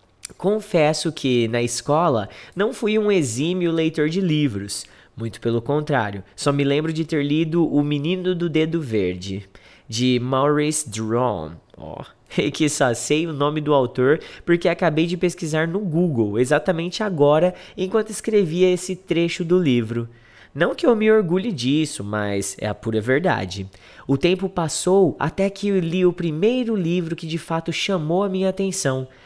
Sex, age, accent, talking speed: male, 20-39, Brazilian, 160 wpm